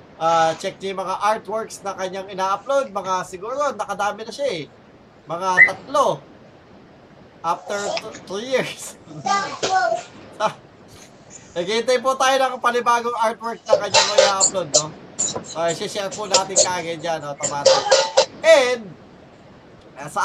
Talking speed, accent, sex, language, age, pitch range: 115 wpm, native, male, Filipino, 20-39, 165-210 Hz